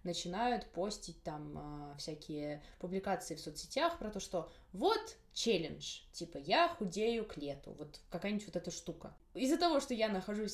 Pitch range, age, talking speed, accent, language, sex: 175-235 Hz, 20-39, 160 wpm, native, Russian, female